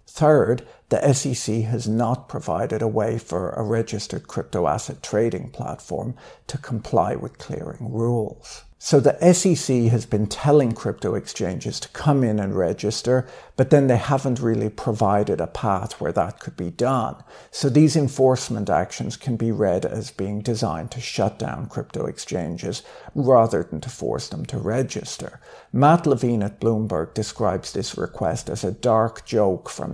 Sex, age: male, 60-79